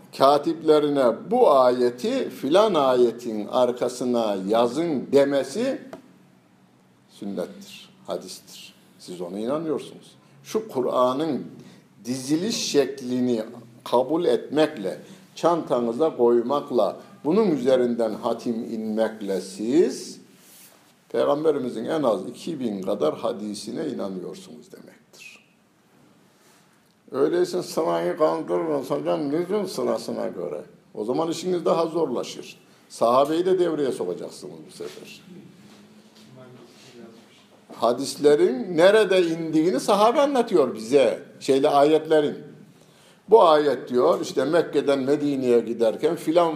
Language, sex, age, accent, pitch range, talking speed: Turkish, male, 60-79, native, 120-185 Hz, 90 wpm